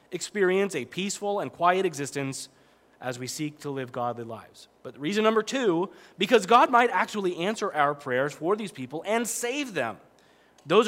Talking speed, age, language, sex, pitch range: 170 wpm, 30-49, English, male, 135-185 Hz